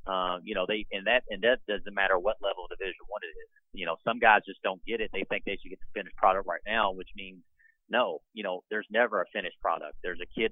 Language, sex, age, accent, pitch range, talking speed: English, male, 40-59, American, 95-115 Hz, 275 wpm